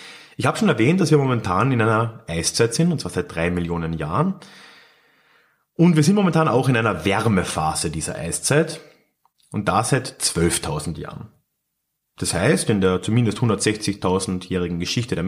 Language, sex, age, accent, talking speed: German, male, 30-49, German, 155 wpm